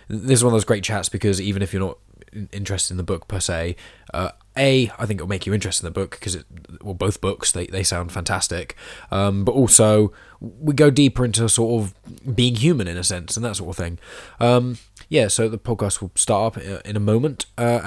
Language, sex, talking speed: English, male, 230 wpm